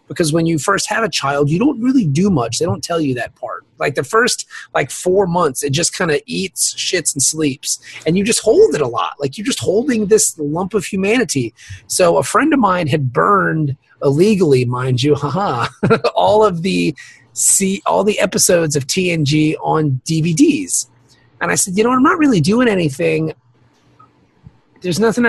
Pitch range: 140-200 Hz